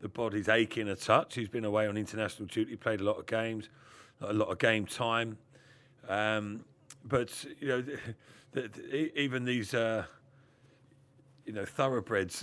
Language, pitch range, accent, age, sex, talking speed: English, 110-135 Hz, British, 40-59, male, 170 wpm